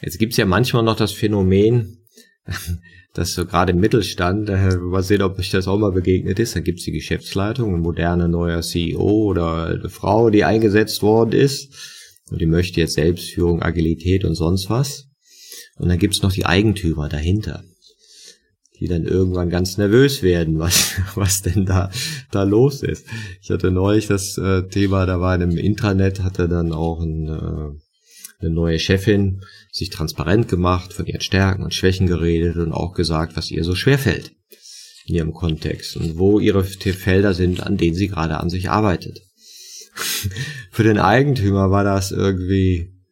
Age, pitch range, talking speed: 30-49, 90-110 Hz, 175 wpm